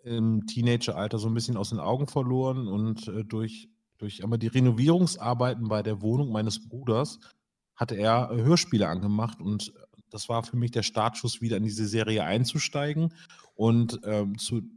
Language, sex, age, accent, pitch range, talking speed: German, male, 30-49, German, 110-135 Hz, 160 wpm